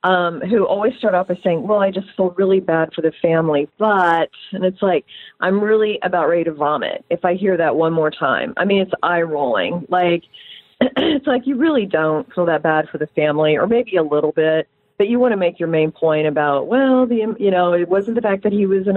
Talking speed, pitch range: 240 wpm, 170-215 Hz